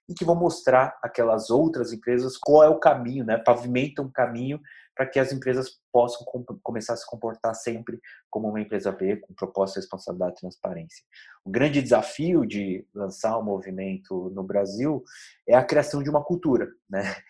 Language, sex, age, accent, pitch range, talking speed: Portuguese, male, 20-39, Brazilian, 105-140 Hz, 180 wpm